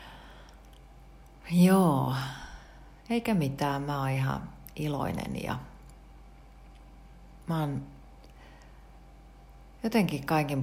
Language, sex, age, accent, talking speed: Finnish, female, 40-59, native, 70 wpm